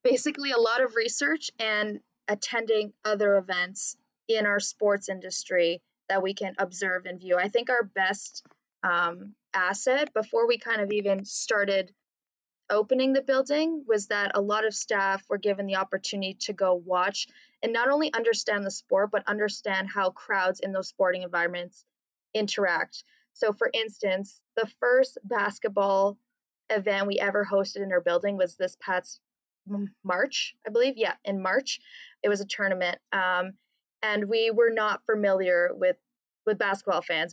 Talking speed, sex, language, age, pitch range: 160 wpm, female, English, 20-39, 185-230 Hz